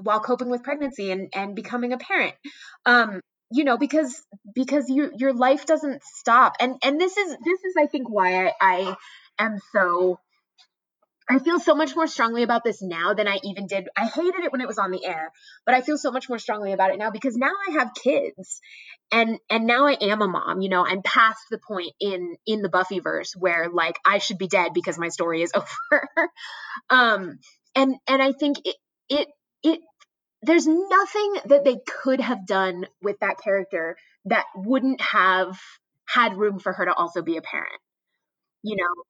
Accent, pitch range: American, 200-290 Hz